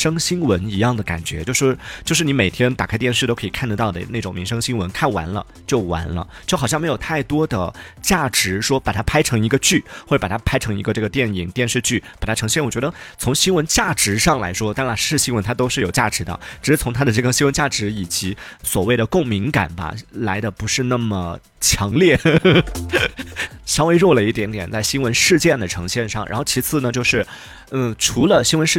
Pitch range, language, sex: 100-140 Hz, Chinese, male